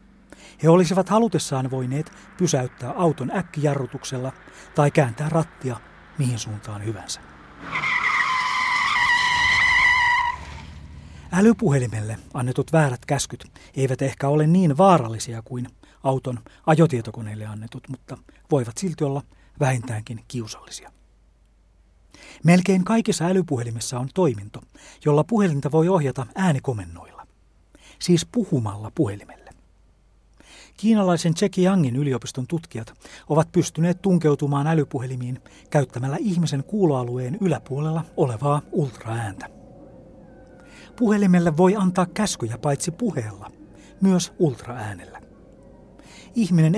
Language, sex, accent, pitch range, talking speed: Finnish, male, native, 125-180 Hz, 85 wpm